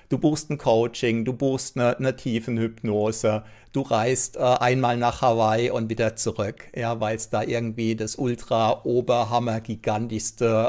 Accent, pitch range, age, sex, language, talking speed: German, 110-125 Hz, 60-79, male, German, 140 wpm